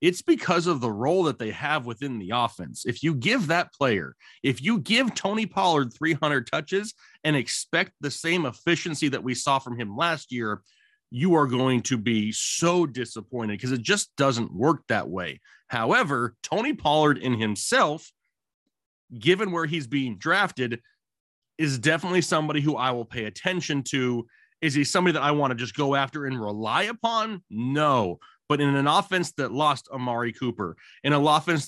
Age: 30-49